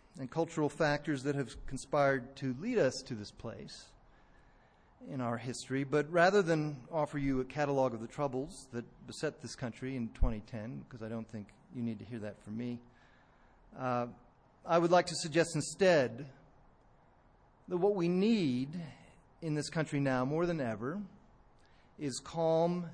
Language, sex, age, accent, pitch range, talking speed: English, male, 40-59, American, 120-165 Hz, 160 wpm